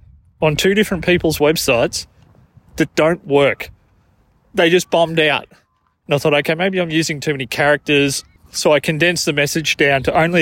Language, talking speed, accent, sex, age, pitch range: English, 175 wpm, Australian, male, 20-39, 125-160 Hz